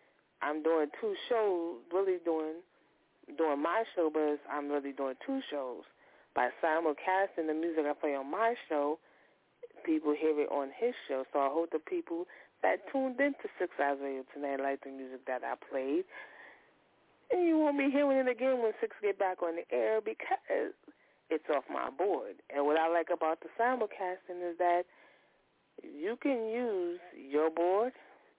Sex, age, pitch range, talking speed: female, 30-49, 145-200 Hz, 175 wpm